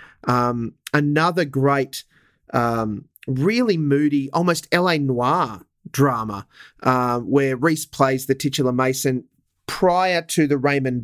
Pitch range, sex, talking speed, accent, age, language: 120-145 Hz, male, 120 wpm, Australian, 30-49, English